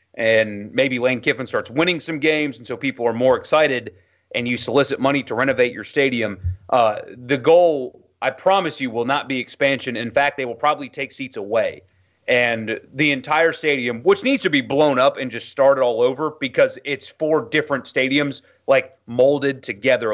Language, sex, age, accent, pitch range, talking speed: English, male, 30-49, American, 120-160 Hz, 190 wpm